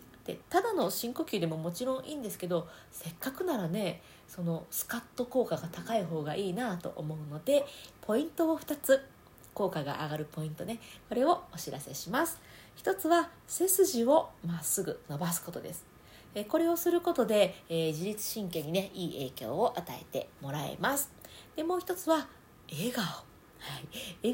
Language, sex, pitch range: Japanese, female, 170-265 Hz